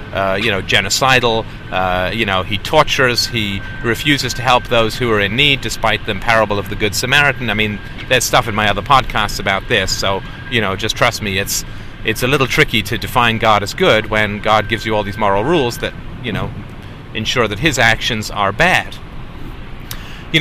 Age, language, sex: 30-49, English, male